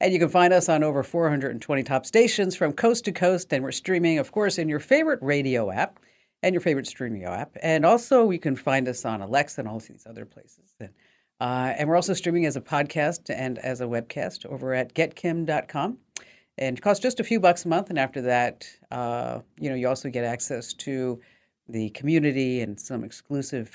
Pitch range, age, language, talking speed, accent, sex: 130-185 Hz, 50-69, English, 210 wpm, American, female